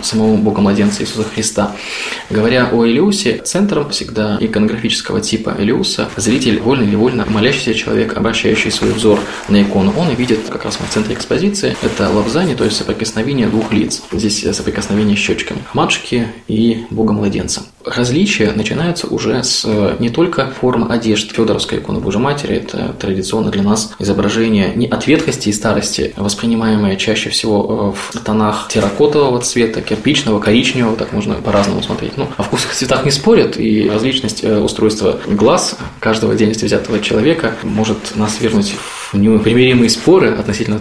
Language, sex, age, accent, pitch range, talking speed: Russian, male, 20-39, native, 105-125 Hz, 150 wpm